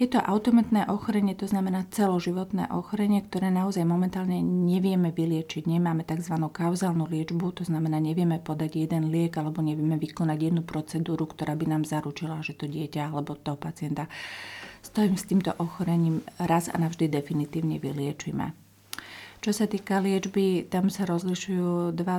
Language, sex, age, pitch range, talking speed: Slovak, female, 40-59, 155-185 Hz, 150 wpm